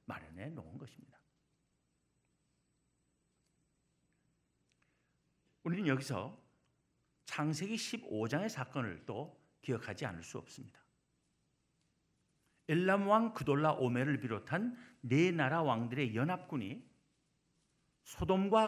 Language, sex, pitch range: Korean, male, 130-190 Hz